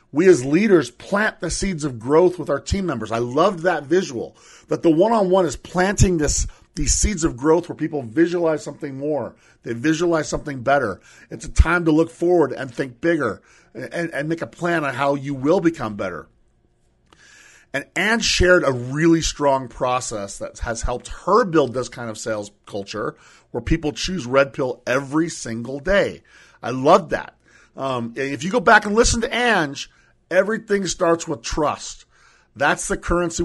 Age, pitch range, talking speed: 40-59, 130-175 Hz, 180 wpm